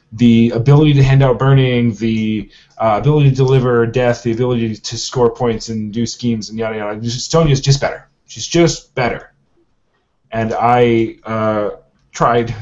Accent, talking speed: American, 160 wpm